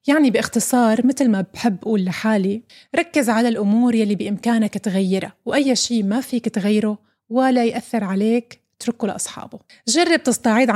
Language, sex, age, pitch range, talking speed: Arabic, female, 30-49, 205-245 Hz, 140 wpm